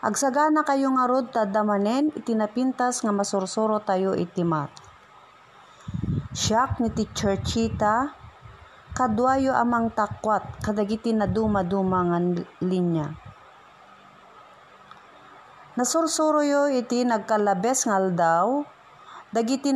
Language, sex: Filipino, female